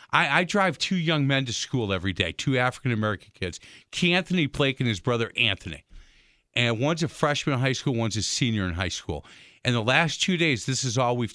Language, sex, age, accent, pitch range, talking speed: English, male, 50-69, American, 115-150 Hz, 215 wpm